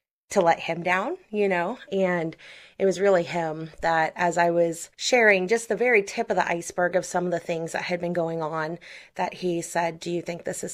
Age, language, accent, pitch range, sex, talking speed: 30-49, English, American, 165-190 Hz, female, 230 wpm